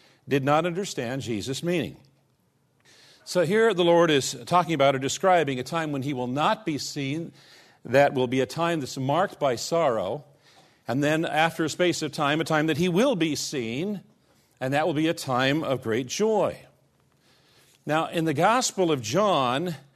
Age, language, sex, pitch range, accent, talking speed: 50-69, English, male, 135-170 Hz, American, 180 wpm